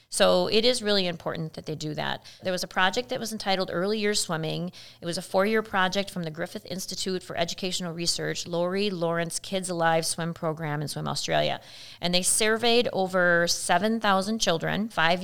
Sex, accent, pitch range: female, American, 165-200 Hz